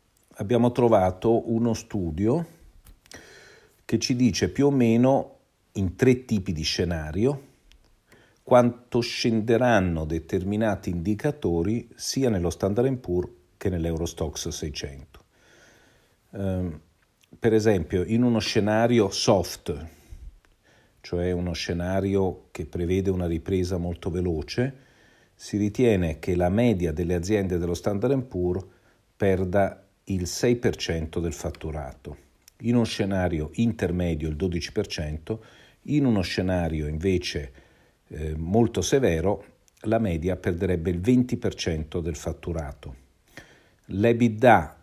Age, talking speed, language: 50-69, 105 wpm, Italian